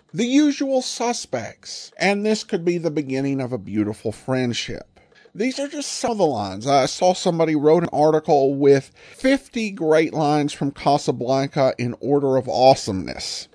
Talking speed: 160 wpm